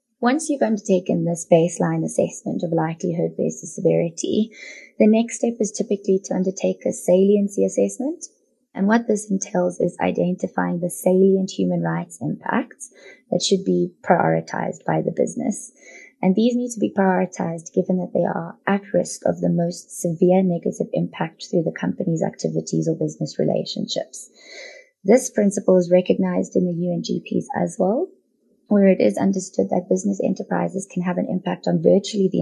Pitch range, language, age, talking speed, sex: 165-215 Hz, English, 20-39, 160 wpm, female